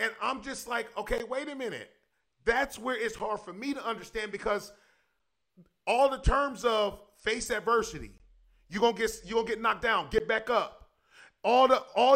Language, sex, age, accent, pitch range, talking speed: English, male, 30-49, American, 205-265 Hz, 190 wpm